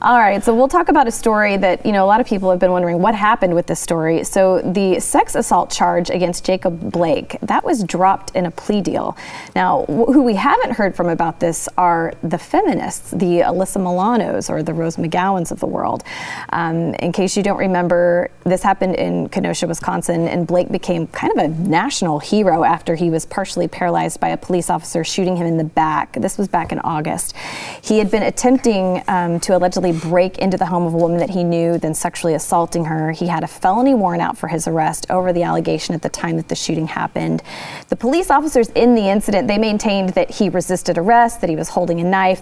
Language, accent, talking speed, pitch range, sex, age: English, American, 220 wpm, 170-215 Hz, female, 30-49